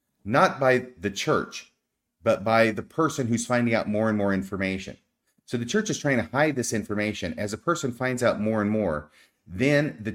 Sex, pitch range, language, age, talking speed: male, 90-115 Hz, English, 40-59, 200 wpm